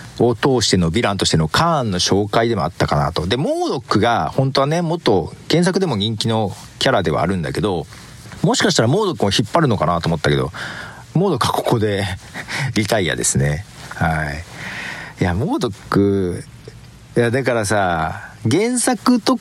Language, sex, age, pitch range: Japanese, male, 40-59, 100-160 Hz